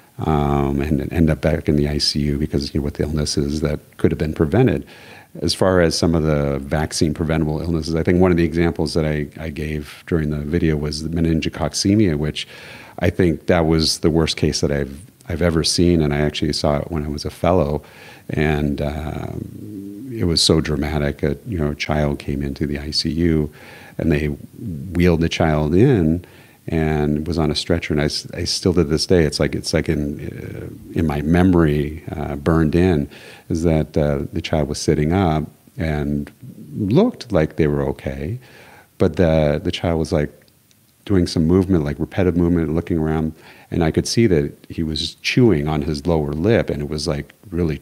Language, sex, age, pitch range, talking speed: English, male, 40-59, 75-85 Hz, 195 wpm